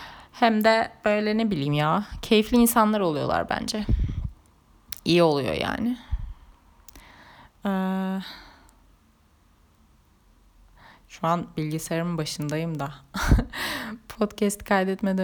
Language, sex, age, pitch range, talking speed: Turkish, female, 30-49, 150-190 Hz, 85 wpm